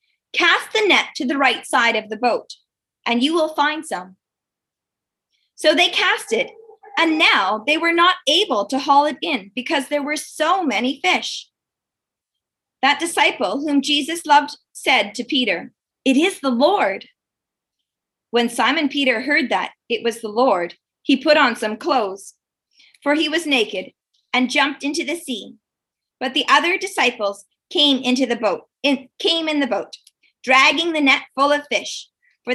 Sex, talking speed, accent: female, 165 wpm, American